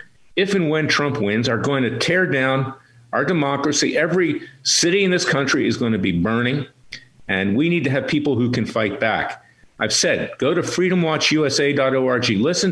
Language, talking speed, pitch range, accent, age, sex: English, 180 wpm, 120-170 Hz, American, 50-69, male